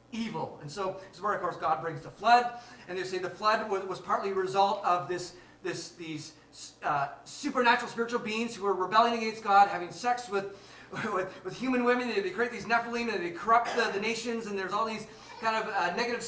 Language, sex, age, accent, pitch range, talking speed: English, male, 30-49, American, 190-235 Hz, 220 wpm